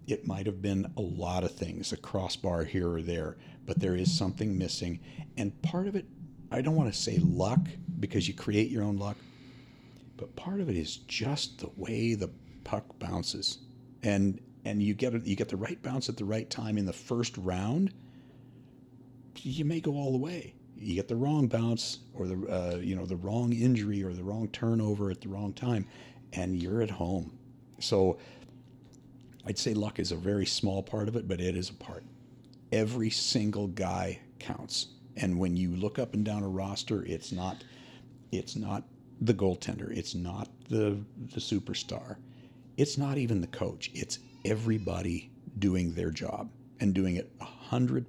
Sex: male